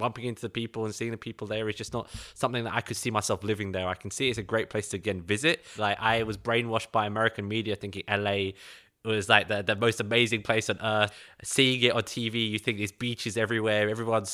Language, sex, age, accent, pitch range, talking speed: English, male, 20-39, British, 105-120 Hz, 245 wpm